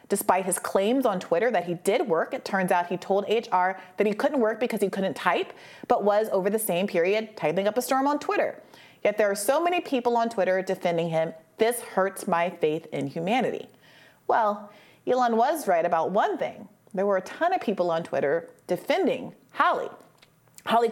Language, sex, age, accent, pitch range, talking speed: English, female, 30-49, American, 175-230 Hz, 200 wpm